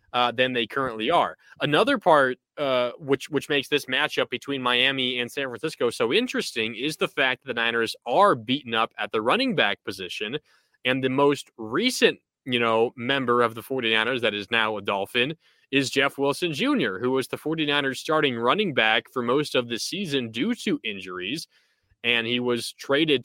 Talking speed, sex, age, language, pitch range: 185 wpm, male, 20-39, English, 120-150 Hz